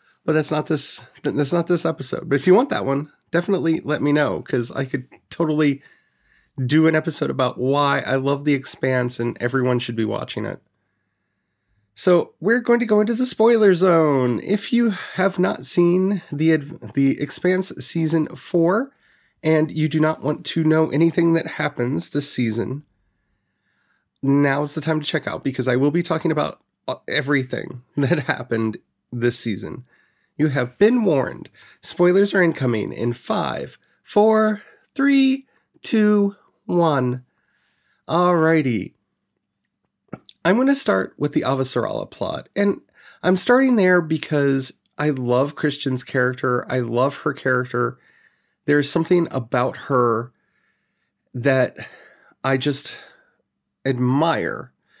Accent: American